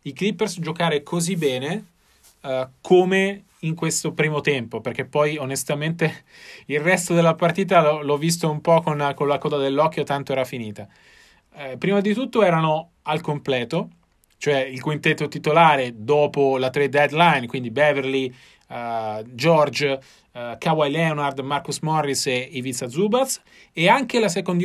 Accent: native